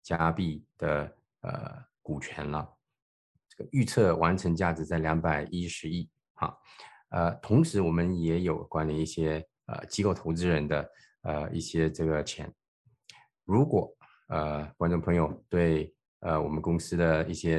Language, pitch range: Chinese, 80-85 Hz